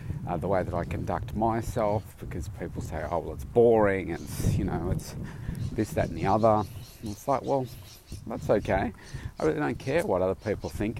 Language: English